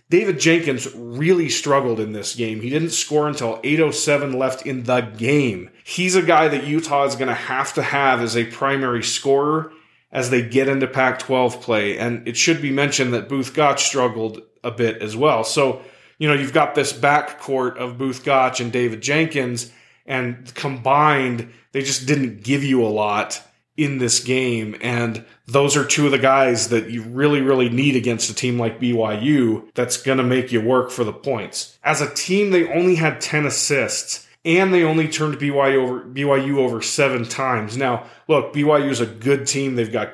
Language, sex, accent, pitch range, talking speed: English, male, American, 120-145 Hz, 190 wpm